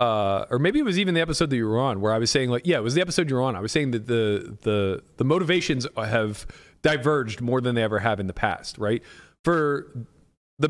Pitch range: 115-155 Hz